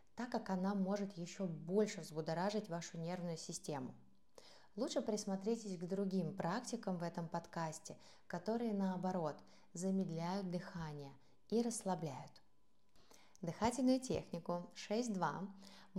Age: 20-39